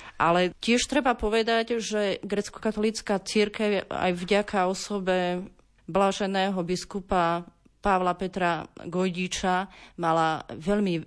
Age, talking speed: 30-49, 90 wpm